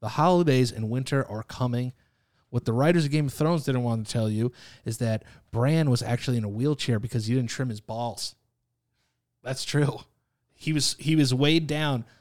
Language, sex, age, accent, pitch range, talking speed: English, male, 30-49, American, 120-155 Hz, 195 wpm